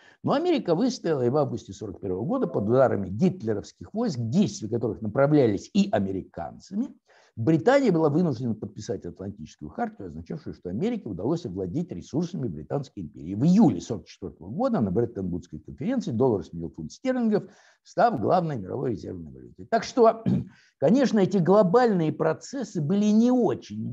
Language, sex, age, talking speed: Russian, male, 60-79, 140 wpm